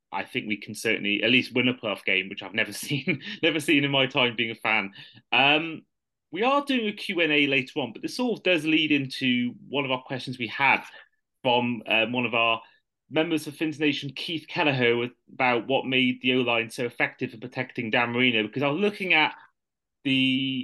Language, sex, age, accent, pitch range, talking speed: English, male, 30-49, British, 115-145 Hz, 210 wpm